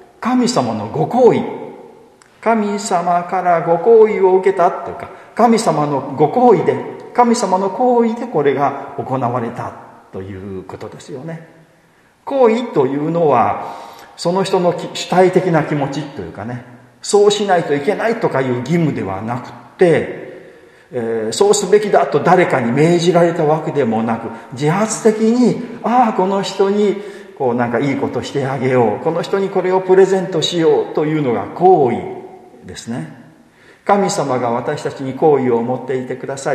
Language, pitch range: Japanese, 125-200 Hz